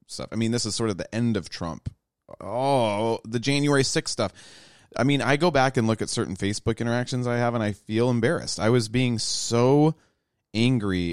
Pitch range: 85-115 Hz